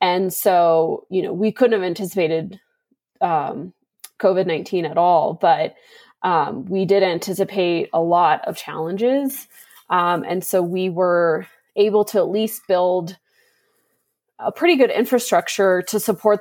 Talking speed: 135 wpm